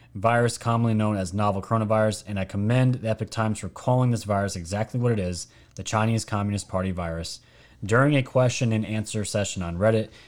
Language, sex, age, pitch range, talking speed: English, male, 30-49, 100-125 Hz, 195 wpm